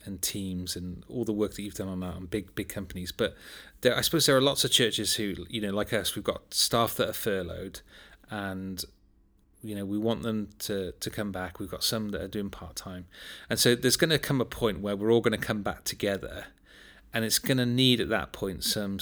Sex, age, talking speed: male, 30-49, 245 wpm